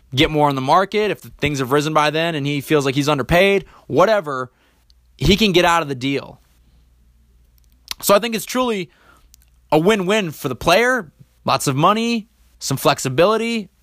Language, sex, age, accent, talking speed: English, male, 20-39, American, 175 wpm